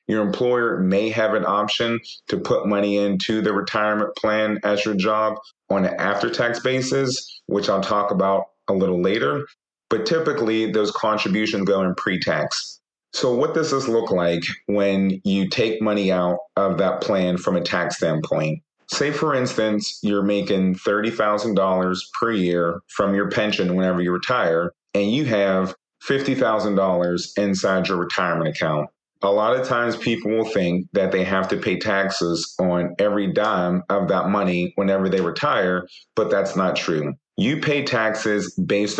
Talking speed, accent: 160 wpm, American